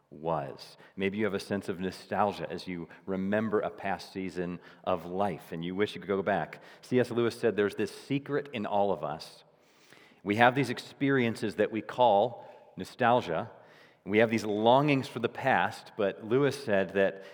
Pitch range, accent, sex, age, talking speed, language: 100-135 Hz, American, male, 40-59, 180 wpm, English